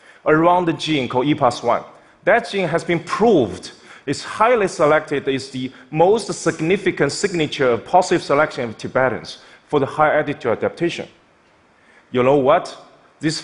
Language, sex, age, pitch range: Chinese, male, 30-49, 135-180 Hz